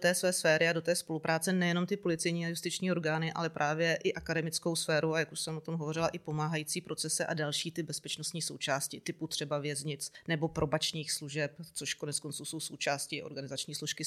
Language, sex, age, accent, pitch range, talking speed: Czech, female, 30-49, native, 155-170 Hz, 195 wpm